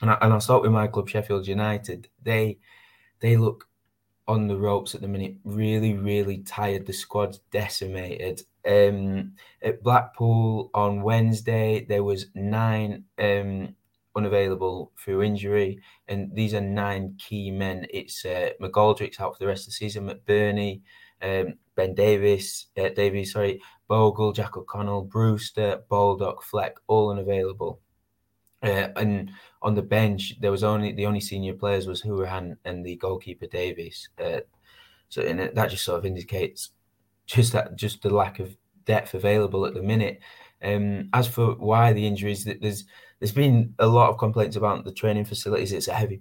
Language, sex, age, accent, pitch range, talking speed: English, male, 20-39, British, 100-110 Hz, 160 wpm